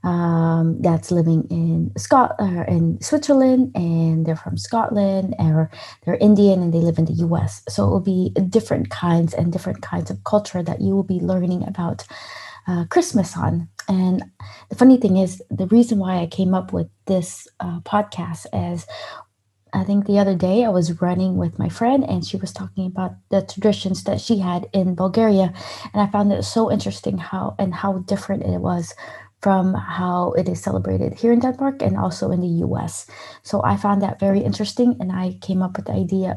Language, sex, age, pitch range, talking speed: English, female, 20-39, 165-200 Hz, 195 wpm